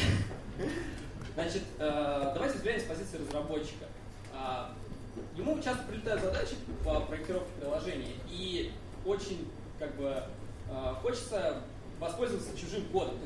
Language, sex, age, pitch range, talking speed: Russian, male, 20-39, 125-190 Hz, 100 wpm